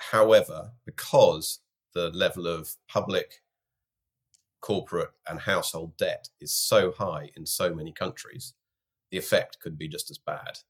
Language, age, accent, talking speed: English, 30-49, British, 135 wpm